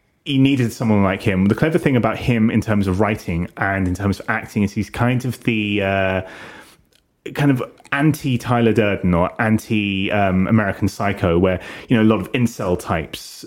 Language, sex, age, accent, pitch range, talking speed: English, male, 30-49, British, 95-120 Hz, 185 wpm